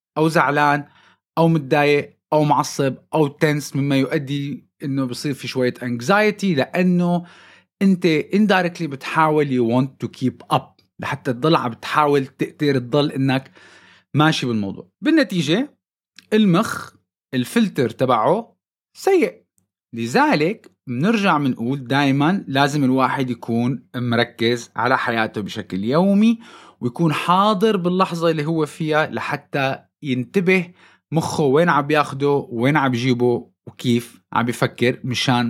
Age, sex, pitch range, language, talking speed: 30-49, male, 120-165 Hz, Arabic, 115 wpm